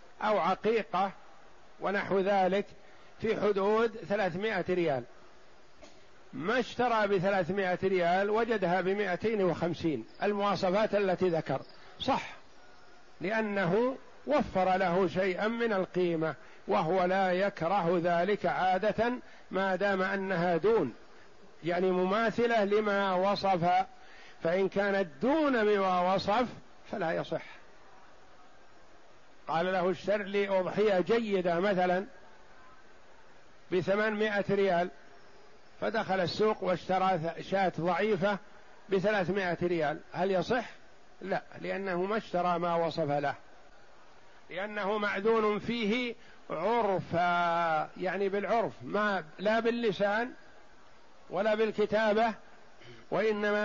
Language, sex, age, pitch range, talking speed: Arabic, male, 50-69, 180-215 Hz, 90 wpm